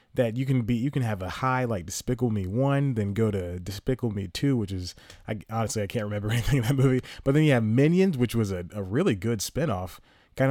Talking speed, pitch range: 245 wpm, 100-130 Hz